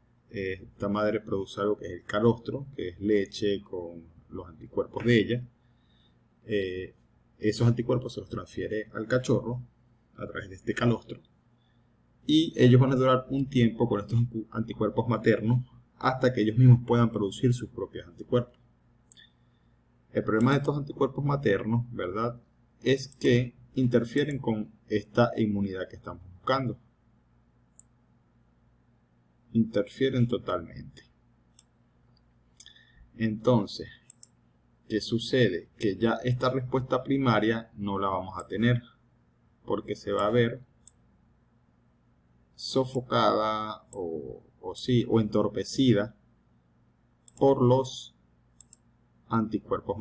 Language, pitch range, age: English, 95-125 Hz, 30-49